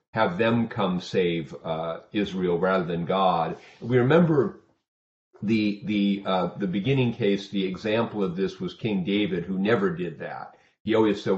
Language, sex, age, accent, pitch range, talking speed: English, male, 40-59, American, 95-115 Hz, 165 wpm